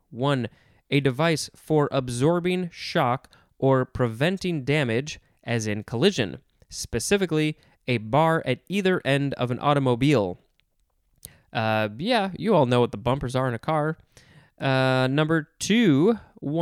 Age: 20-39